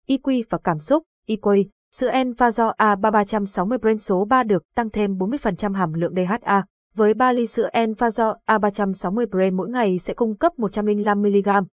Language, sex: Vietnamese, female